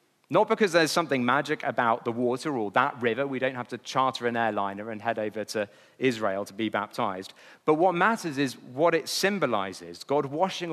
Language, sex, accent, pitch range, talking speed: English, male, British, 120-170 Hz, 195 wpm